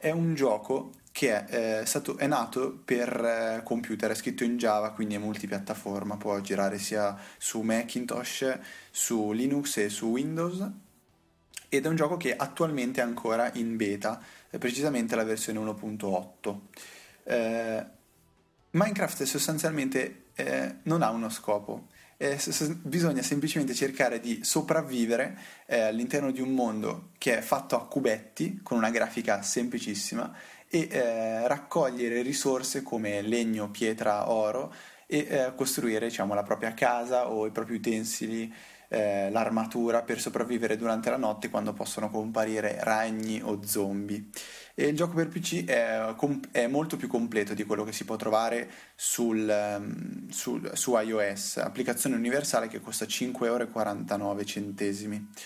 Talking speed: 135 wpm